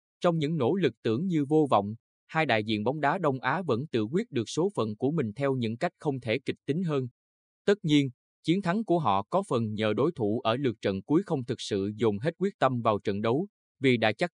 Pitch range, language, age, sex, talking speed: 110-150 Hz, Vietnamese, 20-39, male, 245 wpm